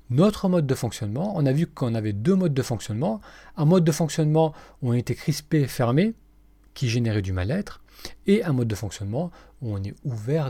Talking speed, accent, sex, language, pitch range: 200 wpm, French, male, French, 110-165 Hz